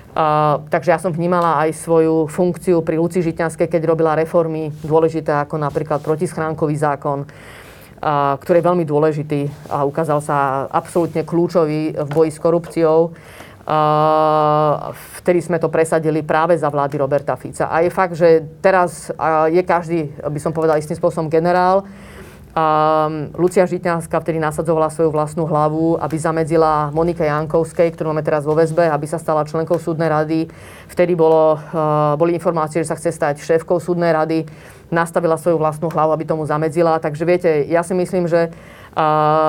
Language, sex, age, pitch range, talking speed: Slovak, female, 30-49, 155-170 Hz, 160 wpm